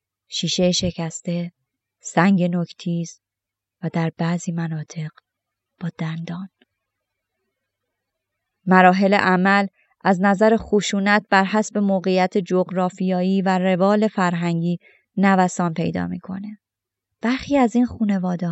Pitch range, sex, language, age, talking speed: 175-210 Hz, female, Persian, 20-39, 95 wpm